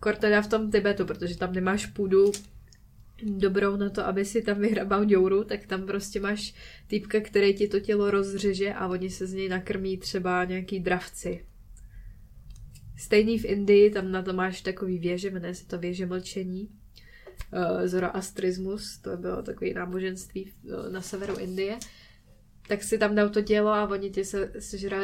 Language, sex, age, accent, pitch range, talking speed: Czech, female, 10-29, native, 185-205 Hz, 160 wpm